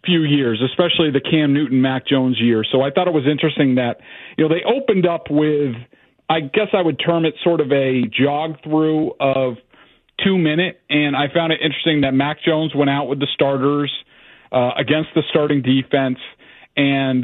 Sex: male